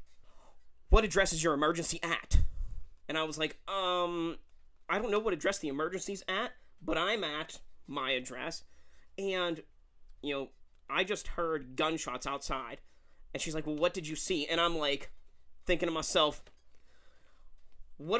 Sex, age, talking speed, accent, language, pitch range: male, 30-49, 155 wpm, American, English, 140-180 Hz